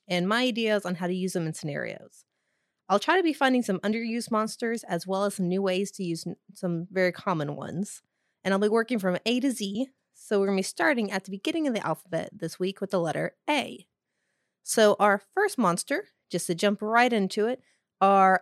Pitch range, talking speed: 170-215 Hz, 220 wpm